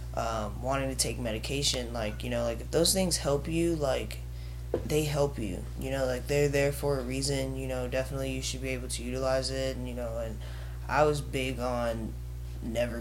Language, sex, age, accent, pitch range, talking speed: English, male, 10-29, American, 105-135 Hz, 210 wpm